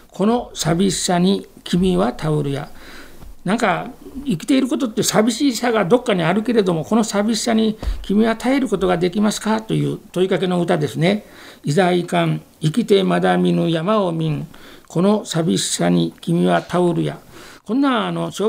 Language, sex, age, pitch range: Japanese, male, 60-79, 160-210 Hz